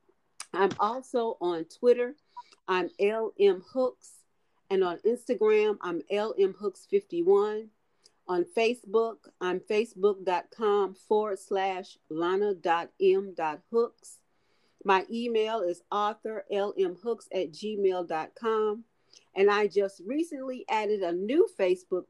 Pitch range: 185-235 Hz